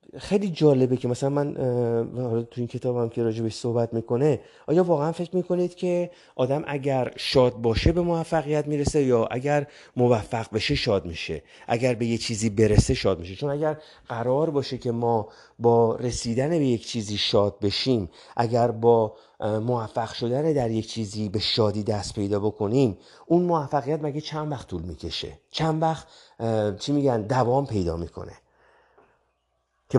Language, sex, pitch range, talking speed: Persian, male, 115-145 Hz, 155 wpm